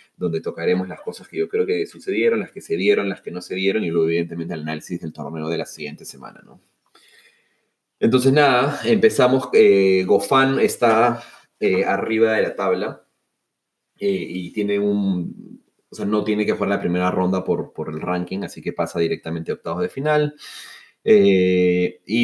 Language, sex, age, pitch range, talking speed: Spanish, male, 30-49, 85-115 Hz, 185 wpm